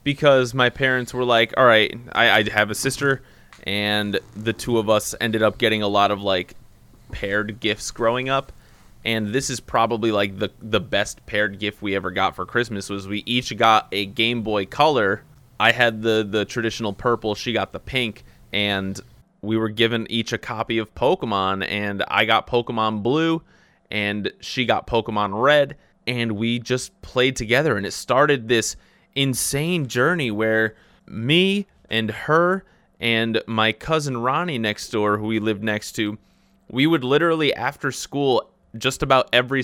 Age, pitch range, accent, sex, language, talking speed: 20-39, 105-130 Hz, American, male, English, 170 wpm